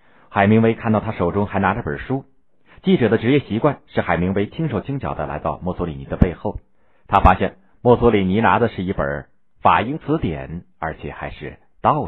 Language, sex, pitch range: Chinese, male, 85-115 Hz